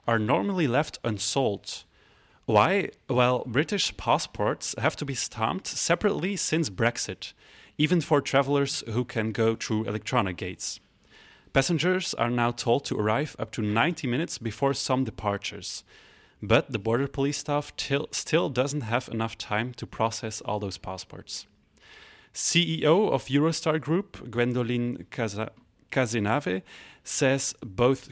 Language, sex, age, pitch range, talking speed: French, male, 30-49, 110-140 Hz, 130 wpm